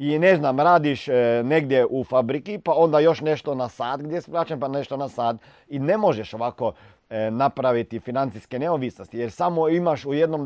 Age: 40-59